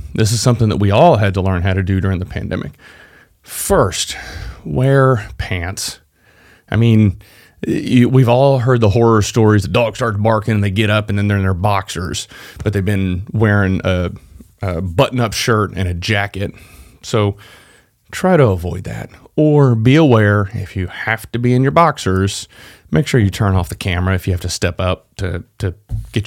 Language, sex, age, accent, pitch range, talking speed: English, male, 30-49, American, 95-120 Hz, 190 wpm